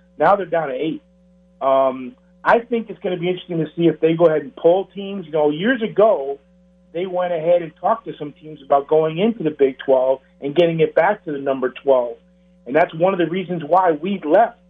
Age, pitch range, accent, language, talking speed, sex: 40-59, 150-180 Hz, American, English, 235 wpm, male